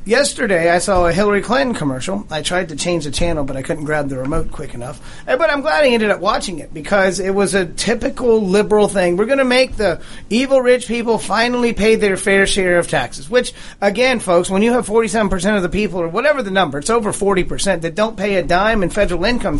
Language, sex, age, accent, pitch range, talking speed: English, male, 40-59, American, 175-225 Hz, 235 wpm